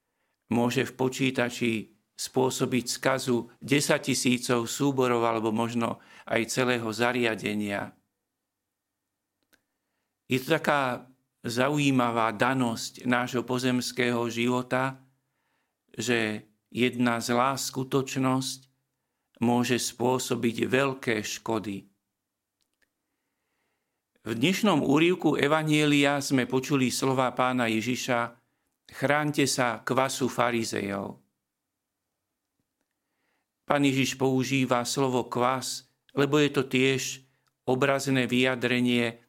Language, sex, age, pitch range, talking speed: Slovak, male, 50-69, 120-135 Hz, 80 wpm